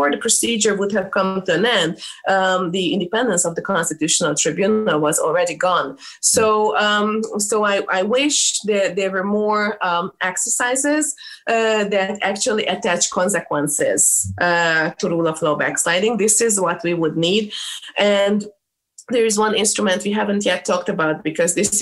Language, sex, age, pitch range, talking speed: English, female, 20-39, 165-215 Hz, 165 wpm